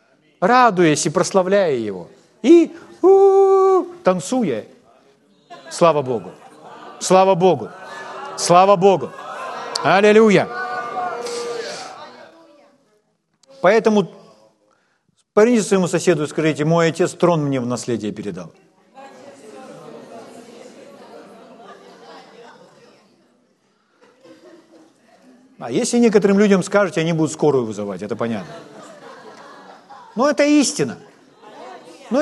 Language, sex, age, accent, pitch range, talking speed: Ukrainian, male, 40-59, native, 170-260 Hz, 75 wpm